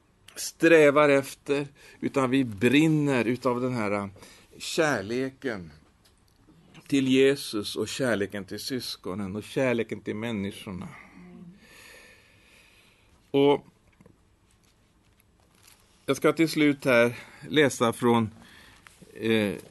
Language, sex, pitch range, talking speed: Swedish, male, 105-145 Hz, 80 wpm